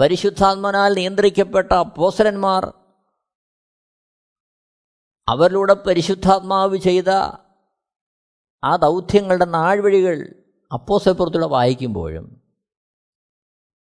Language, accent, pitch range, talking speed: Malayalam, native, 155-195 Hz, 50 wpm